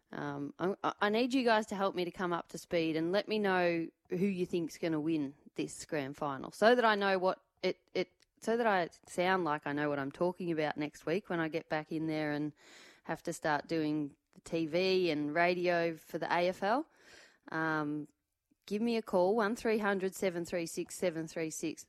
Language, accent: English, Australian